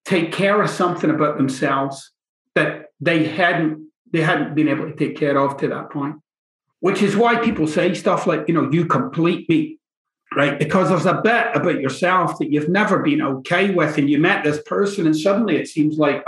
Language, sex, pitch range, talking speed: English, male, 150-205 Hz, 205 wpm